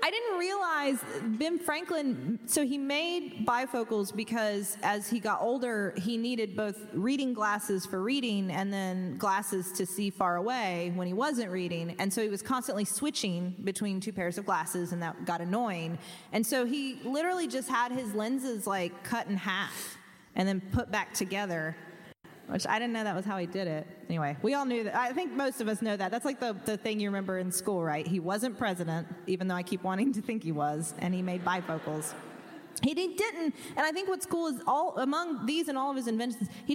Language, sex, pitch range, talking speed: English, female, 185-255 Hz, 210 wpm